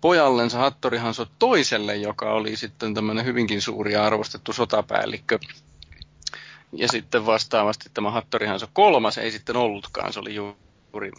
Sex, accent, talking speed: male, native, 140 wpm